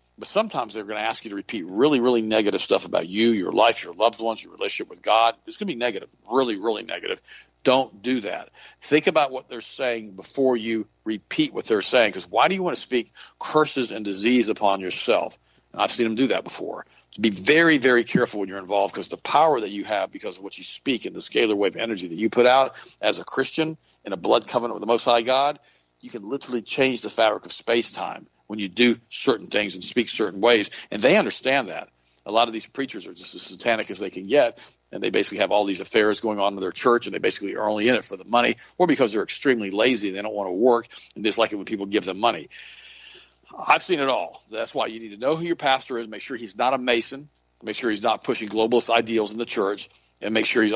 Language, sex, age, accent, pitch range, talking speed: English, male, 50-69, American, 105-125 Hz, 250 wpm